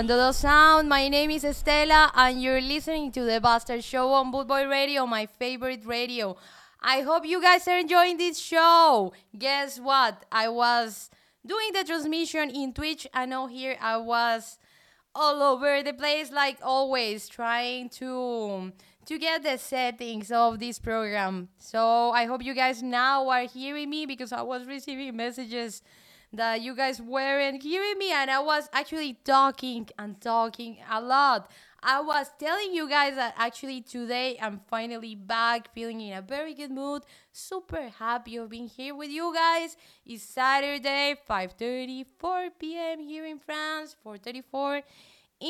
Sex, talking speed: female, 155 wpm